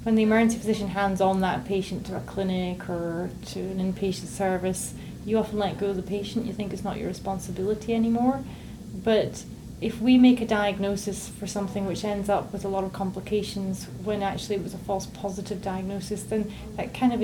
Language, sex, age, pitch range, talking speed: English, female, 30-49, 185-210 Hz, 200 wpm